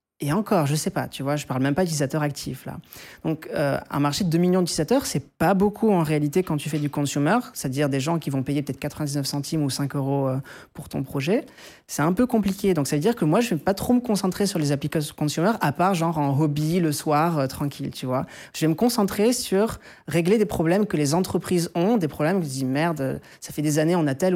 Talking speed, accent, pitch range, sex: 255 wpm, French, 145-185 Hz, male